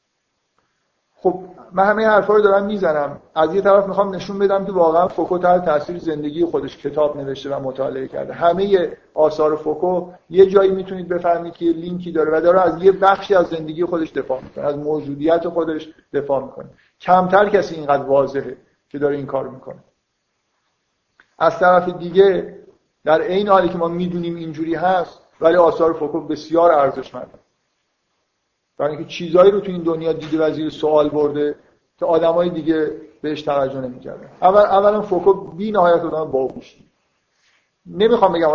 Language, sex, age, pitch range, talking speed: Persian, male, 50-69, 150-190 Hz, 160 wpm